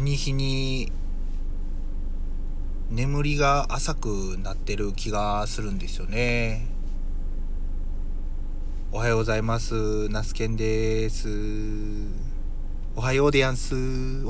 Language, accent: Japanese, native